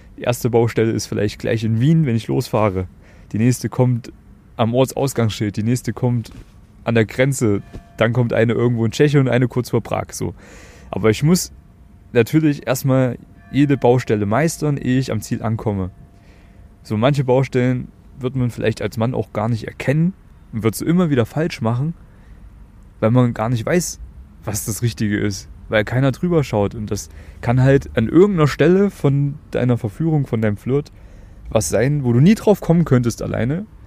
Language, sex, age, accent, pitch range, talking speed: German, male, 30-49, German, 100-125 Hz, 180 wpm